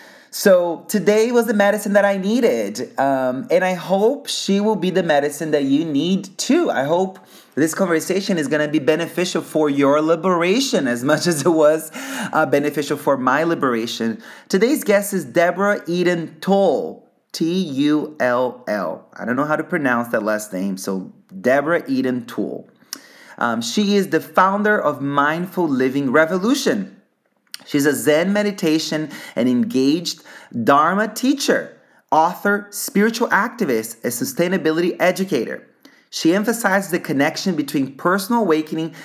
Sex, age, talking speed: male, 30-49, 145 wpm